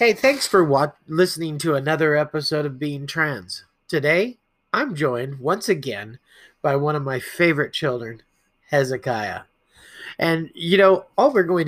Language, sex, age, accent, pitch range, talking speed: English, male, 30-49, American, 145-195 Hz, 150 wpm